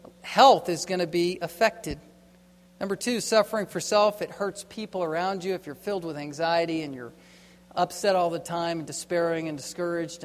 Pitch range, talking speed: 170-215 Hz, 180 wpm